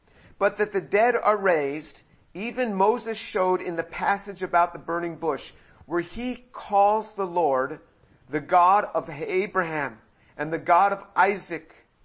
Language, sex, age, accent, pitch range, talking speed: English, male, 50-69, American, 170-215 Hz, 150 wpm